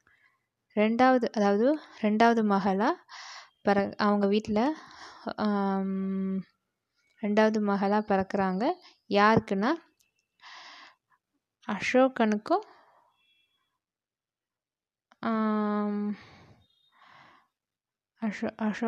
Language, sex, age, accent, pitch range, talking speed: Tamil, female, 20-39, native, 200-230 Hz, 40 wpm